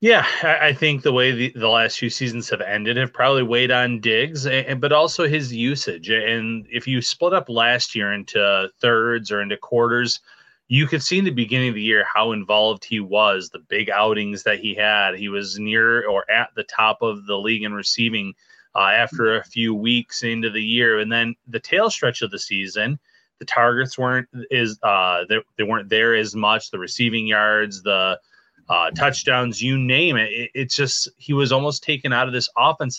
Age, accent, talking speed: 30-49, American, 200 wpm